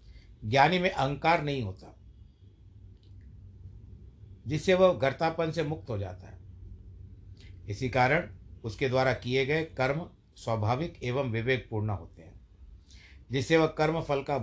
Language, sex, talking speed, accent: Hindi, male, 125 wpm, native